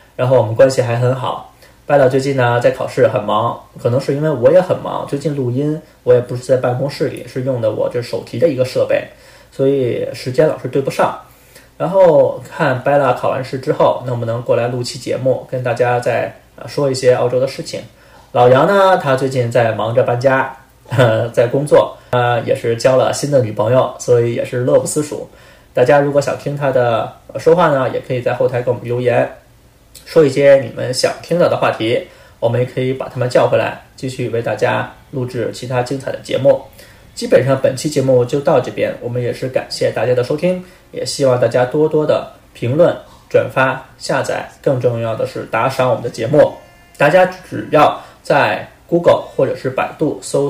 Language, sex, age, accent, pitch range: Chinese, male, 20-39, native, 125-155 Hz